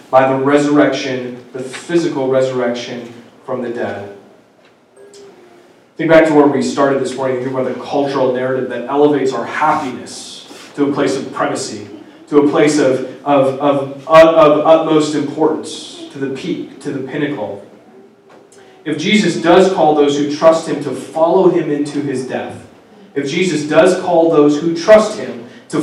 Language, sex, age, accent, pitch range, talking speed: English, male, 20-39, American, 135-170 Hz, 160 wpm